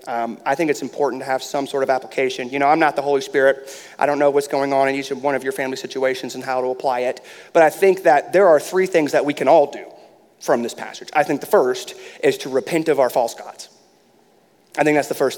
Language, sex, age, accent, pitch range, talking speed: English, male, 30-49, American, 135-200 Hz, 265 wpm